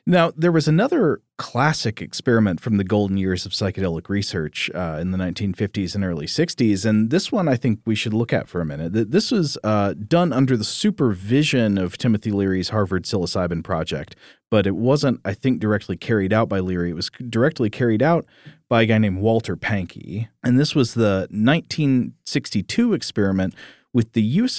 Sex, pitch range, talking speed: male, 95-125 Hz, 185 wpm